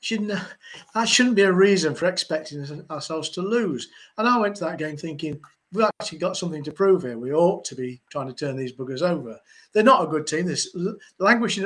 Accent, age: British, 50-69